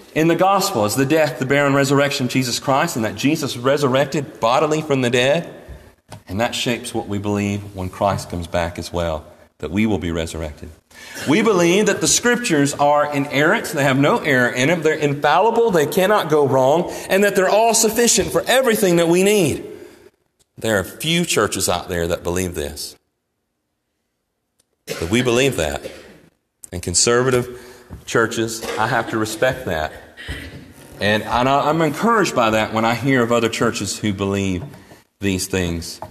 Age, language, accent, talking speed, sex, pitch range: 40-59, English, American, 170 wpm, male, 95-140 Hz